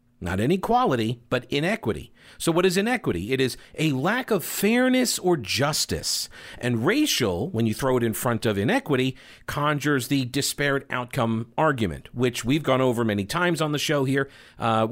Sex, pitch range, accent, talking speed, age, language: male, 120-155 Hz, American, 170 wpm, 50-69, English